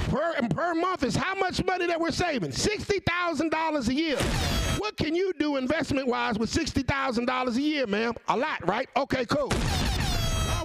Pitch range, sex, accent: 250-335 Hz, male, American